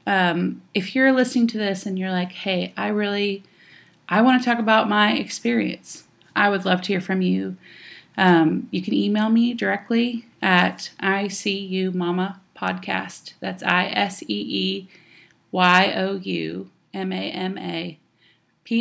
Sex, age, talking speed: female, 30-49, 155 wpm